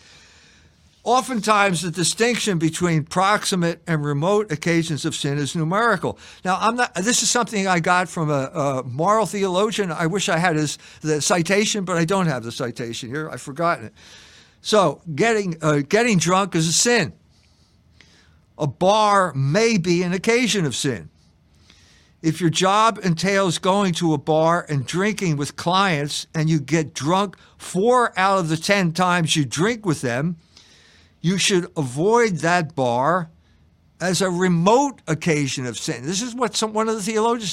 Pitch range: 145-195 Hz